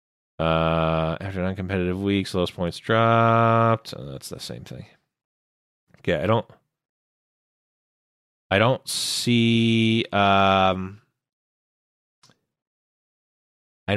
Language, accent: English, American